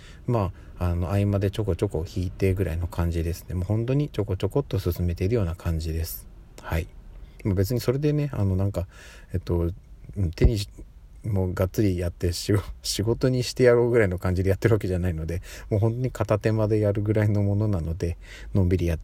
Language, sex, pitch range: Japanese, male, 90-115 Hz